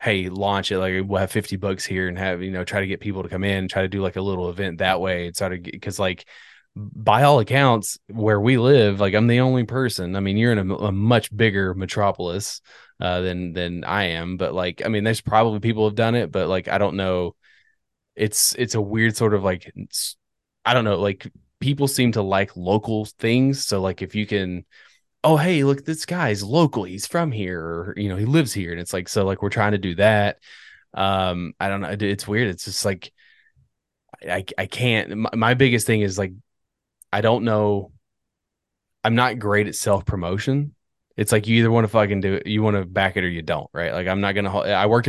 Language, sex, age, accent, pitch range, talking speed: English, male, 20-39, American, 95-110 Hz, 230 wpm